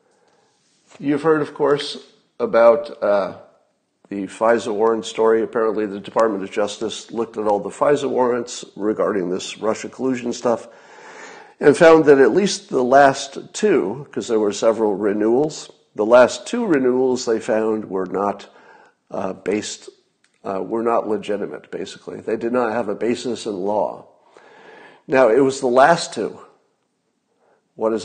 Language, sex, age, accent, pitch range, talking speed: English, male, 50-69, American, 110-140 Hz, 150 wpm